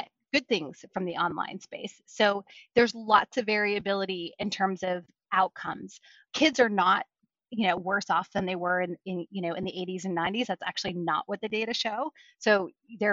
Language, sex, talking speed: English, female, 195 wpm